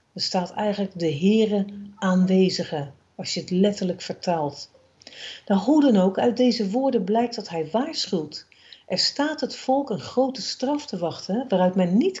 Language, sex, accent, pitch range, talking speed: Dutch, female, Dutch, 175-230 Hz, 165 wpm